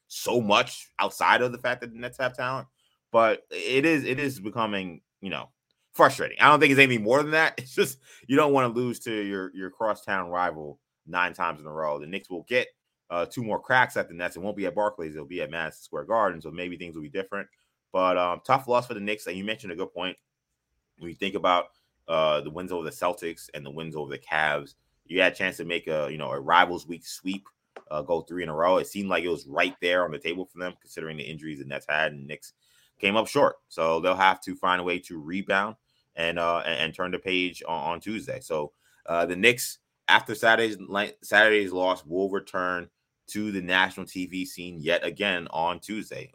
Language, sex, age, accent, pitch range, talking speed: English, male, 20-39, American, 85-110 Hz, 235 wpm